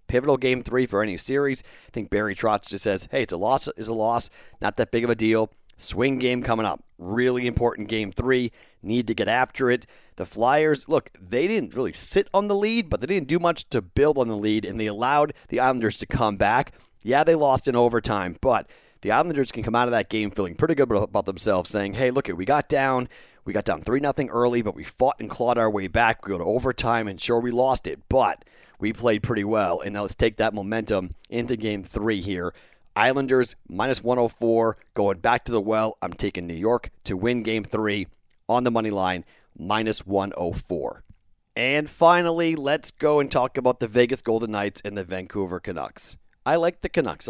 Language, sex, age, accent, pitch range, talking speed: English, male, 40-59, American, 105-130 Hz, 215 wpm